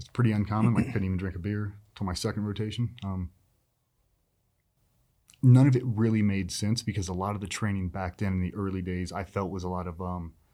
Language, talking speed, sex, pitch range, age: English, 230 wpm, male, 95-115 Hz, 30-49